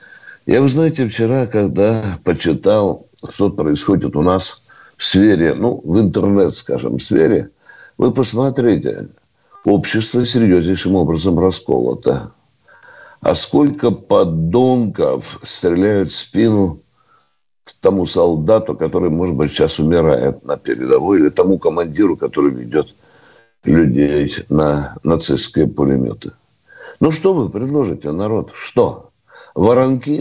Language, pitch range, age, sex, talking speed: Russian, 85-145 Hz, 60-79, male, 110 wpm